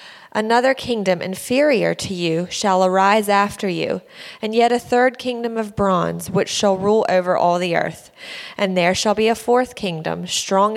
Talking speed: 175 wpm